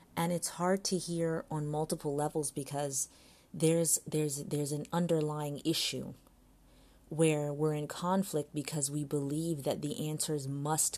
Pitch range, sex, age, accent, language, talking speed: 140-155 Hz, female, 30-49, American, English, 140 wpm